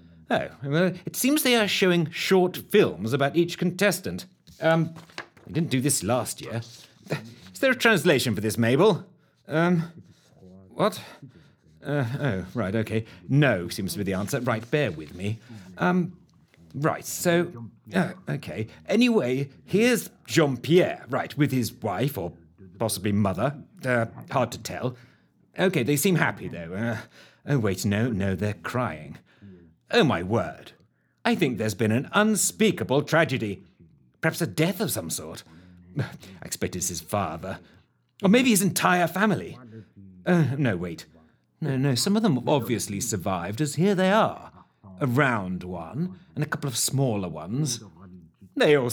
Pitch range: 100-165 Hz